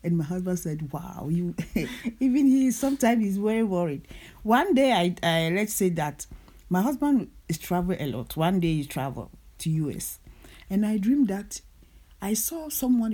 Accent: Nigerian